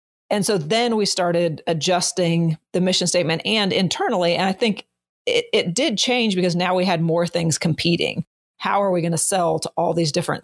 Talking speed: 200 wpm